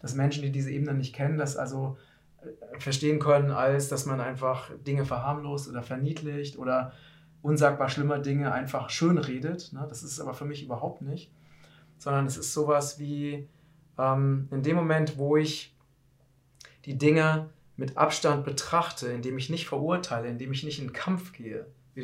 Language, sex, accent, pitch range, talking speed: German, male, German, 135-155 Hz, 160 wpm